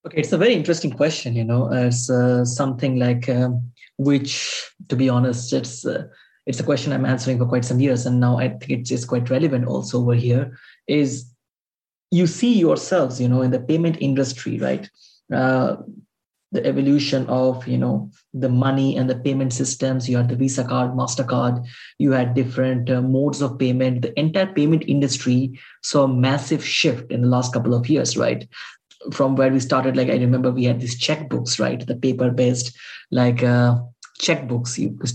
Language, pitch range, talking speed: English, 125-140 Hz, 190 wpm